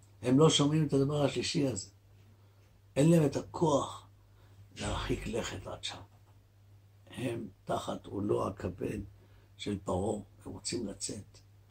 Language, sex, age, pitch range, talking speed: Hebrew, male, 60-79, 100-125 Hz, 120 wpm